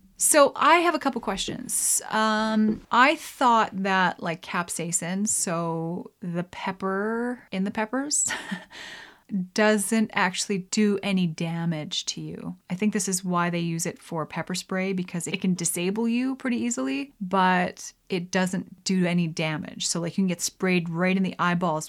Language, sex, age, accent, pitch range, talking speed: English, female, 30-49, American, 180-235 Hz, 160 wpm